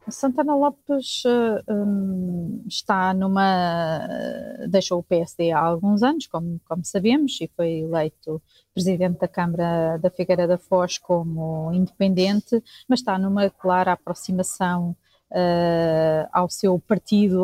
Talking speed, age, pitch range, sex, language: 115 wpm, 30-49, 180-210 Hz, female, Portuguese